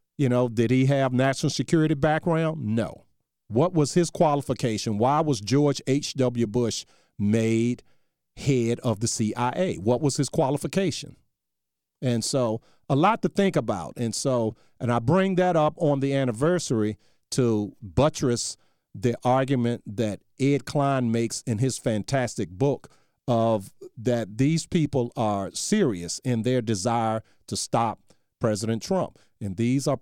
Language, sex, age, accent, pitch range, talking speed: English, male, 50-69, American, 105-140 Hz, 145 wpm